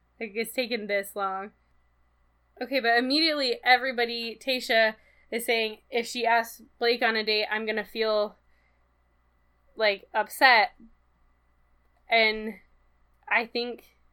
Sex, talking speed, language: female, 120 wpm, English